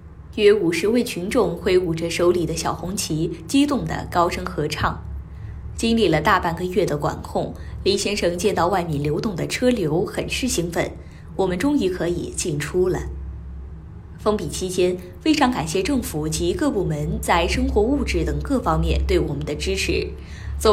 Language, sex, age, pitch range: Chinese, female, 20-39, 145-220 Hz